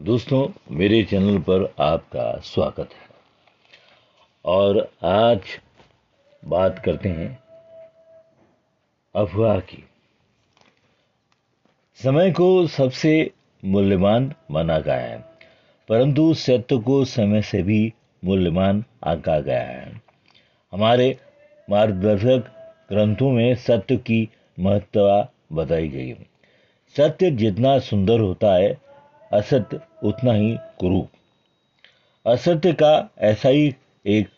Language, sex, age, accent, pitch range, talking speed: Hindi, male, 50-69, native, 100-145 Hz, 95 wpm